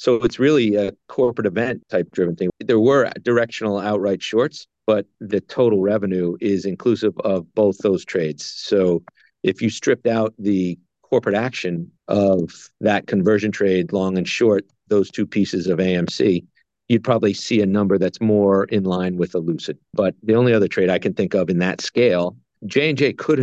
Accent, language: American, English